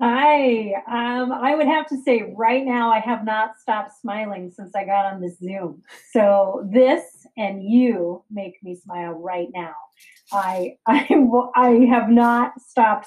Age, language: 30-49, English